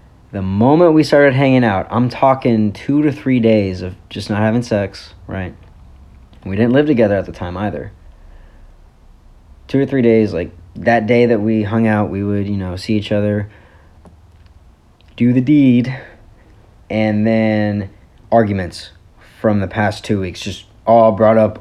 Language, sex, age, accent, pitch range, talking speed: English, male, 40-59, American, 95-115 Hz, 165 wpm